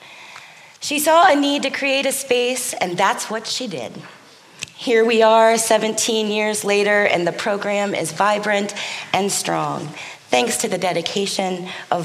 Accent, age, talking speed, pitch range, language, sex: American, 30-49, 155 wpm, 170-230 Hz, English, female